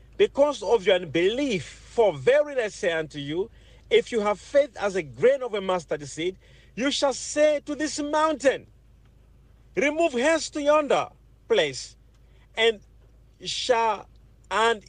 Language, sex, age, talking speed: English, male, 50-69, 140 wpm